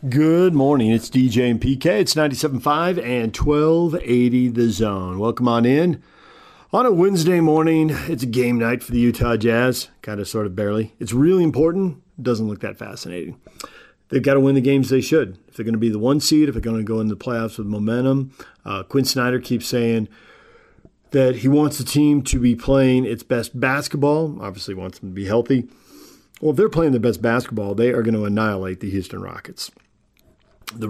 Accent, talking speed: American, 200 wpm